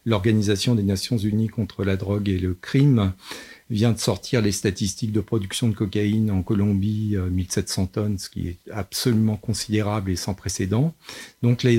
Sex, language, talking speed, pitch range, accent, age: male, French, 170 wpm, 100-120 Hz, French, 50-69